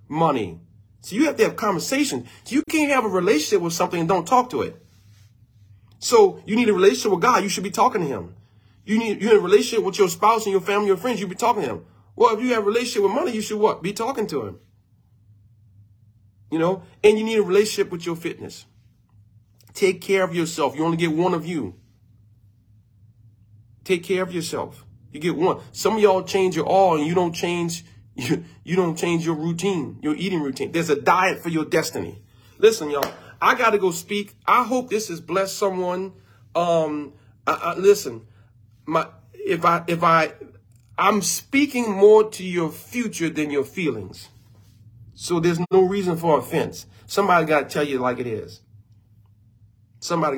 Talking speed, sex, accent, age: 195 wpm, male, American, 30-49